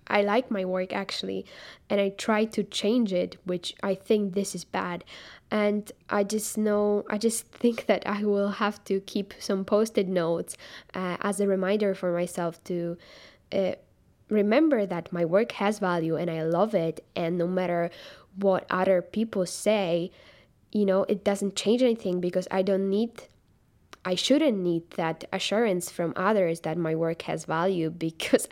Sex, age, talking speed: female, 10-29, 170 wpm